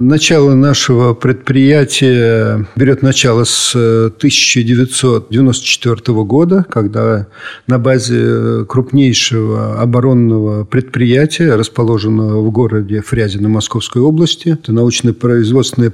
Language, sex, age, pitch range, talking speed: Russian, male, 50-69, 115-145 Hz, 85 wpm